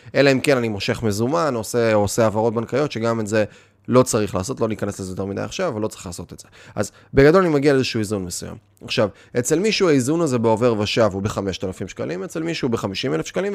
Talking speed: 215 wpm